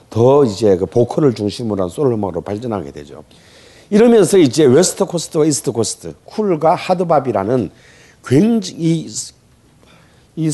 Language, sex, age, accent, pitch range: Korean, male, 40-59, native, 115-160 Hz